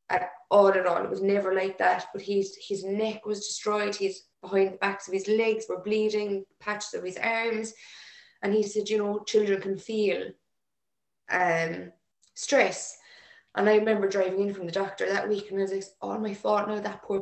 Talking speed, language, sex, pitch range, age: 200 wpm, English, female, 185-215 Hz, 20-39